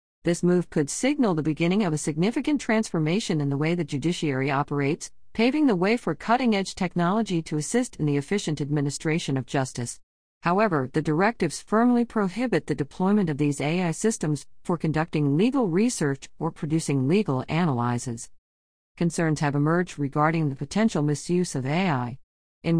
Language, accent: English, American